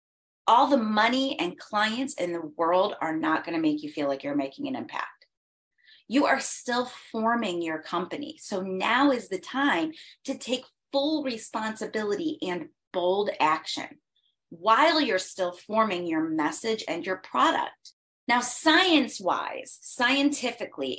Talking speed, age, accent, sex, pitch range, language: 145 wpm, 30-49, American, female, 180-280 Hz, English